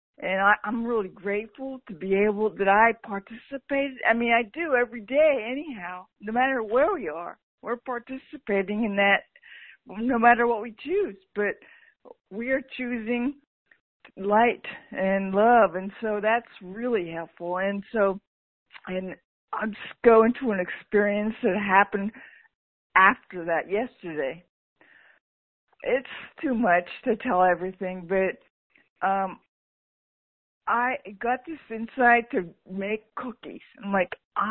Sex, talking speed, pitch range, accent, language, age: female, 130 wpm, 200-255 Hz, American, English, 50-69